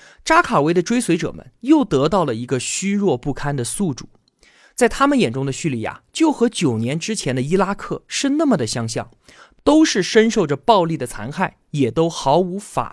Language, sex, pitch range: Chinese, male, 135-225 Hz